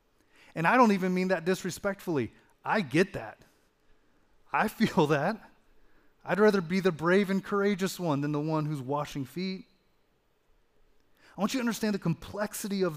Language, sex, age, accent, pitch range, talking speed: English, male, 30-49, American, 155-195 Hz, 160 wpm